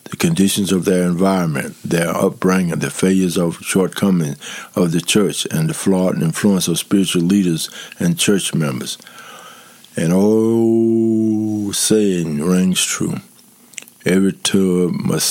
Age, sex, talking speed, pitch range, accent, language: 60-79, male, 125 wpm, 85-105 Hz, American, English